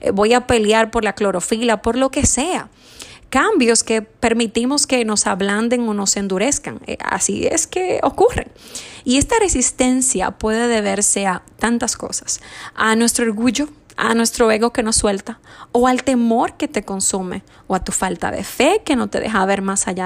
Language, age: Spanish, 20-39